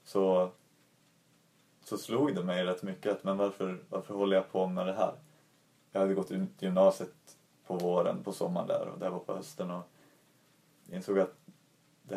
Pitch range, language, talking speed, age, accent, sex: 95-145 Hz, Swedish, 180 wpm, 30-49, native, male